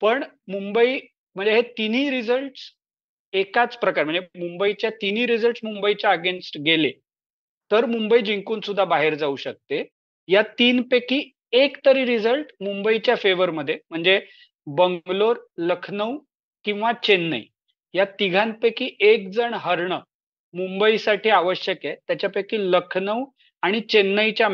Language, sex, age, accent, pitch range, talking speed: Marathi, male, 40-59, native, 190-240 Hz, 115 wpm